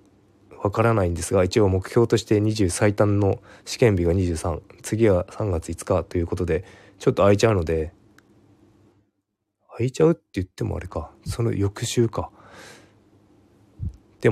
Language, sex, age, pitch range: Japanese, male, 20-39, 90-105 Hz